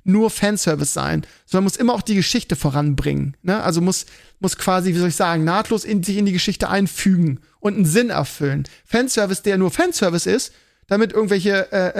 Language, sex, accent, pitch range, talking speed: German, male, German, 170-215 Hz, 190 wpm